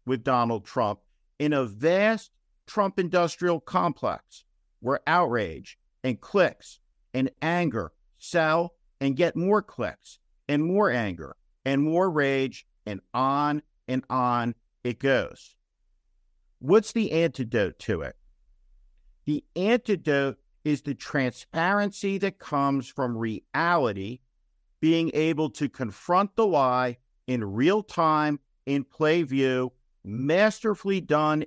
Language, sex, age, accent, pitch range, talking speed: English, male, 50-69, American, 110-155 Hz, 115 wpm